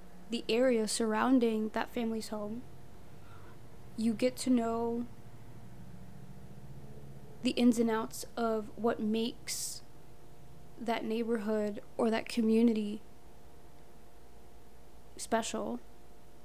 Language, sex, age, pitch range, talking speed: English, female, 20-39, 205-235 Hz, 85 wpm